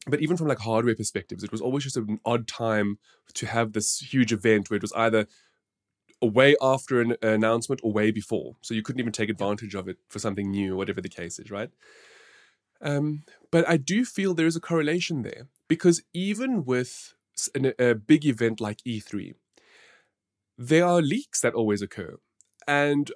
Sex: male